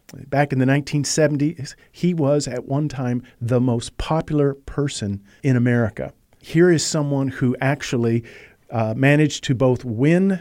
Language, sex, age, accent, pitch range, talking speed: English, male, 50-69, American, 115-150 Hz, 145 wpm